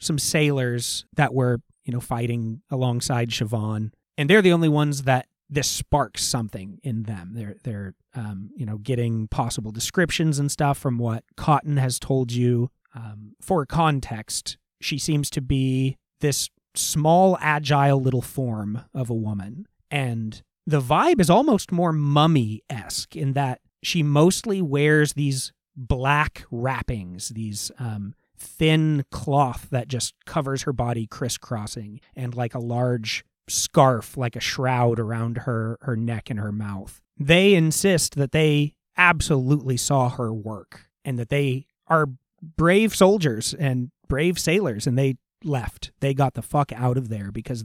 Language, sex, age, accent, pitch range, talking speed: English, male, 30-49, American, 120-150 Hz, 150 wpm